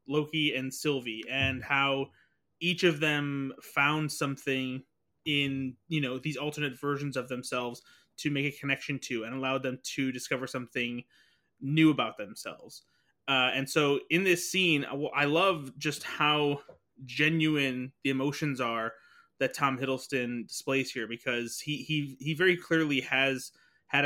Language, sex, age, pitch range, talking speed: English, male, 20-39, 130-150 Hz, 150 wpm